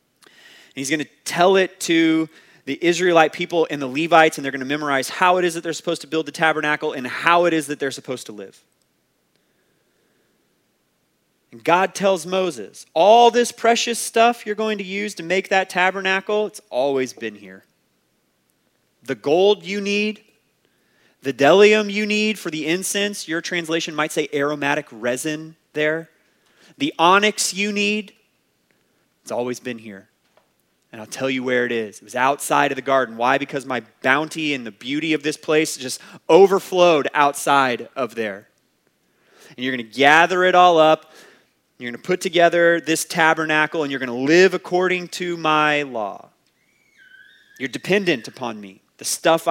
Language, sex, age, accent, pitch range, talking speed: English, male, 30-49, American, 135-185 Hz, 170 wpm